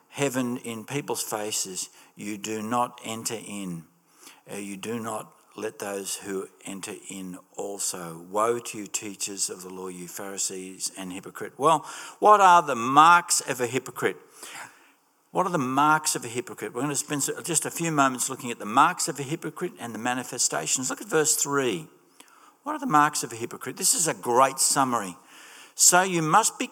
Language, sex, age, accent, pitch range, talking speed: English, male, 60-79, Australian, 120-155 Hz, 185 wpm